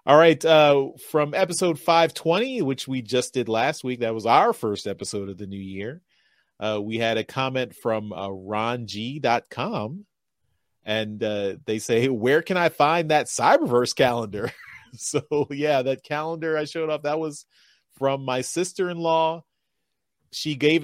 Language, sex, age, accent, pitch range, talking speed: English, male, 30-49, American, 115-150 Hz, 160 wpm